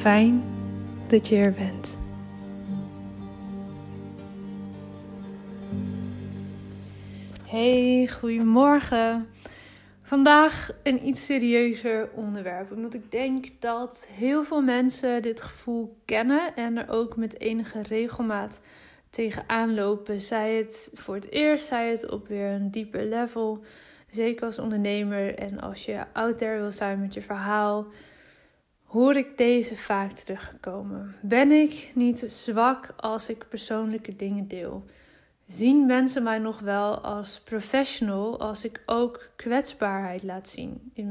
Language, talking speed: Dutch, 120 wpm